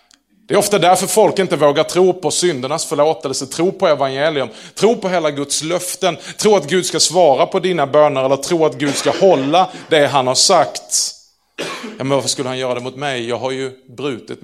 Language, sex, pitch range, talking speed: Swedish, male, 125-180 Hz, 205 wpm